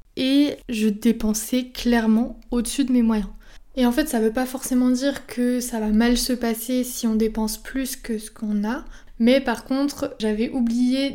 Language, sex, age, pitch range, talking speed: French, female, 20-39, 225-255 Hz, 190 wpm